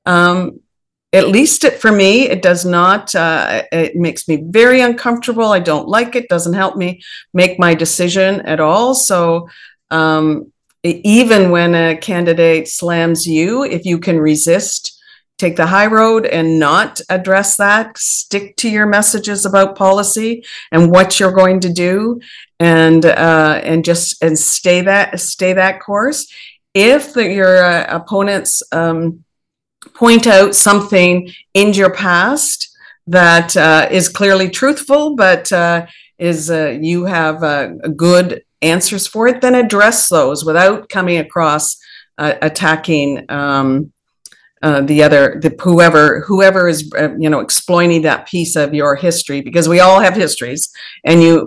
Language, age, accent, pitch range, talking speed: English, 50-69, American, 160-200 Hz, 150 wpm